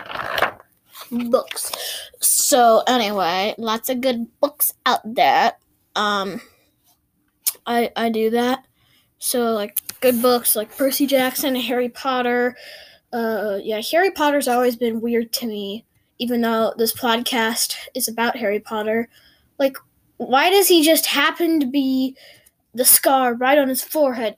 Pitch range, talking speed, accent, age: 230-280 Hz, 135 wpm, American, 10-29